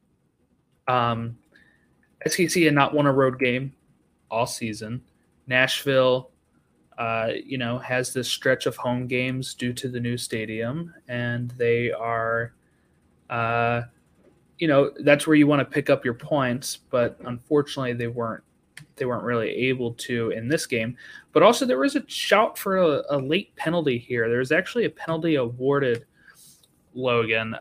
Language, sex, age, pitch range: English, male, 20-39, 120-155 Hz